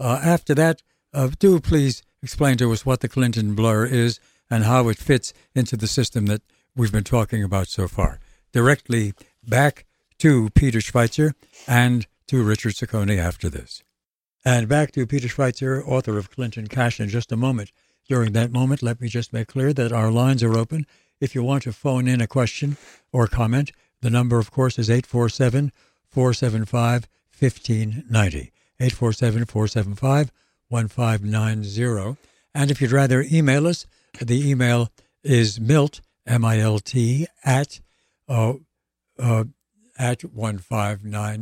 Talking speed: 140 wpm